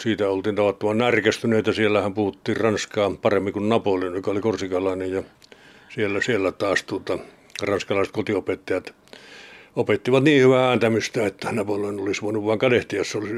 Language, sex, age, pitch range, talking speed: Finnish, male, 60-79, 105-135 Hz, 150 wpm